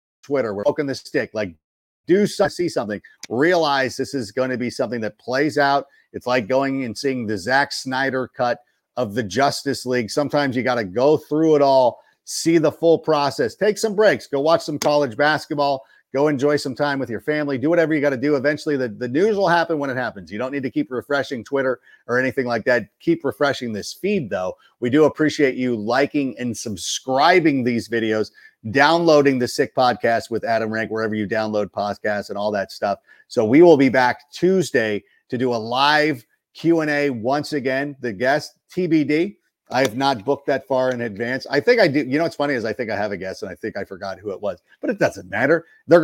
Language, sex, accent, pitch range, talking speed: English, male, American, 120-150 Hz, 220 wpm